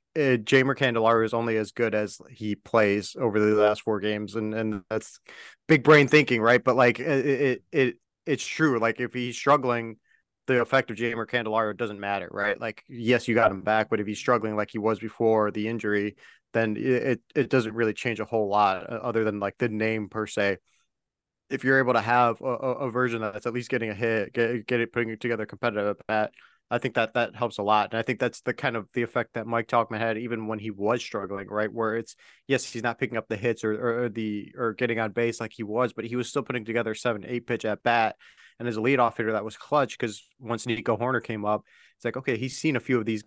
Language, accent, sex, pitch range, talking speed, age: English, American, male, 110-125 Hz, 245 wpm, 30-49